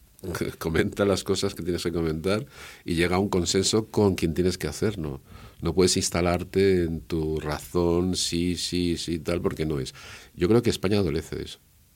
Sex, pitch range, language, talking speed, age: male, 80-100 Hz, Spanish, 190 wpm, 50-69